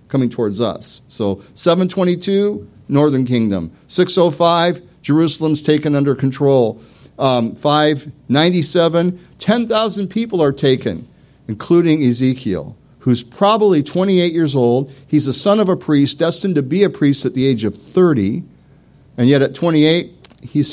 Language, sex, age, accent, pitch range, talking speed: English, male, 50-69, American, 105-145 Hz, 135 wpm